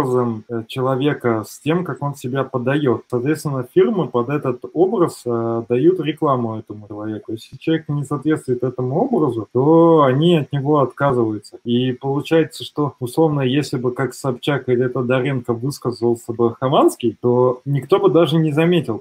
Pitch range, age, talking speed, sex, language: 120-150 Hz, 20-39, 150 wpm, male, Russian